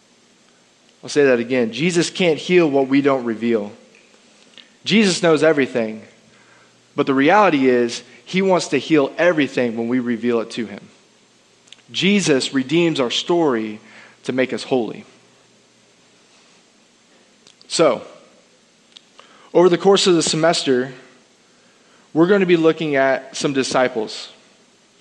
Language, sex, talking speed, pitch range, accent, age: English, male, 125 wpm, 135-180 Hz, American, 20-39